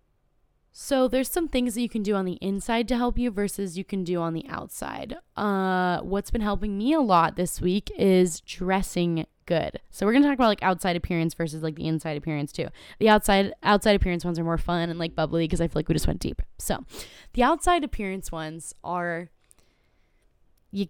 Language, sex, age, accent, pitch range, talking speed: English, female, 10-29, American, 170-210 Hz, 210 wpm